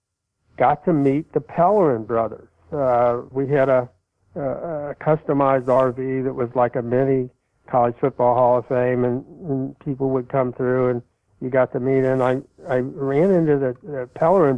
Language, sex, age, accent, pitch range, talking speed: English, male, 60-79, American, 125-145 Hz, 175 wpm